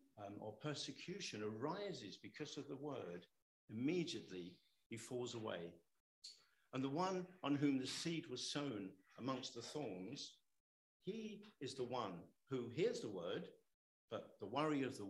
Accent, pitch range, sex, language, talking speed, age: British, 110-165 Hz, male, English, 145 wpm, 50-69